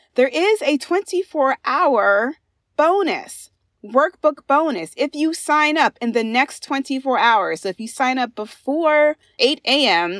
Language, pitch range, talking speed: English, 200-275 Hz, 140 wpm